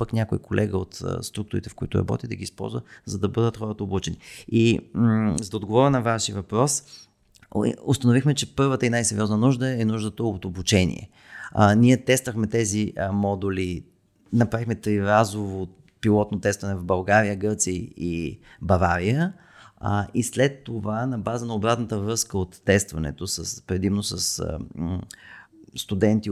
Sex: male